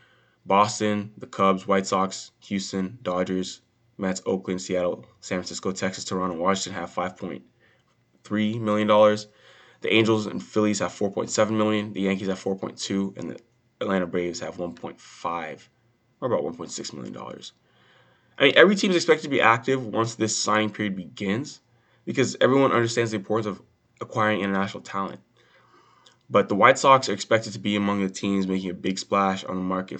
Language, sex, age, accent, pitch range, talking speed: English, male, 20-39, American, 90-110 Hz, 165 wpm